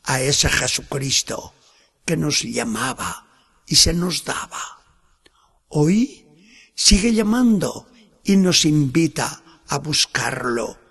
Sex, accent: male, Spanish